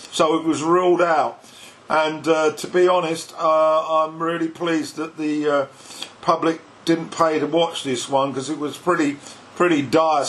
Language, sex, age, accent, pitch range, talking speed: English, male, 50-69, British, 145-170 Hz, 175 wpm